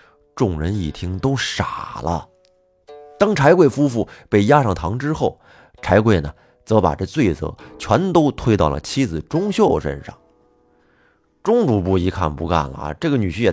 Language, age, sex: Chinese, 30-49, male